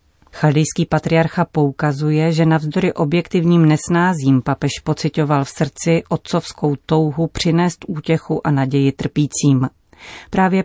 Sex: female